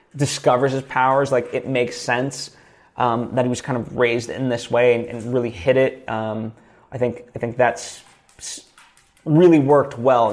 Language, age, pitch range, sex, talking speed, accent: English, 20-39, 115-130 Hz, male, 180 wpm, American